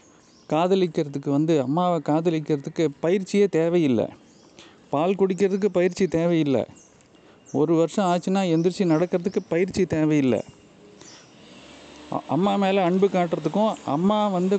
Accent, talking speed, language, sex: native, 95 wpm, Tamil, male